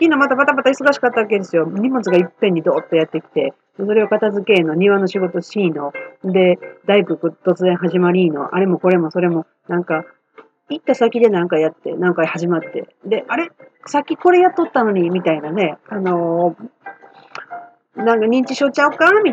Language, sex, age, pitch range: Japanese, female, 40-59, 175-240 Hz